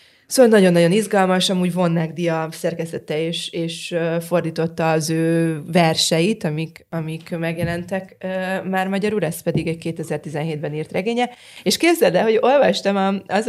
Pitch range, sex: 160-190 Hz, female